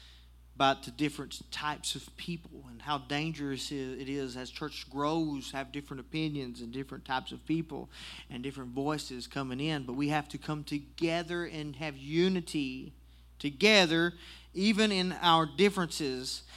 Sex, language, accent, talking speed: male, English, American, 150 wpm